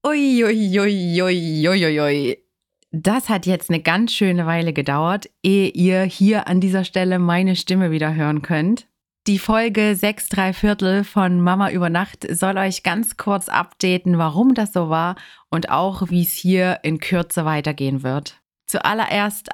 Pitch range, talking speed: 170-200 Hz, 160 wpm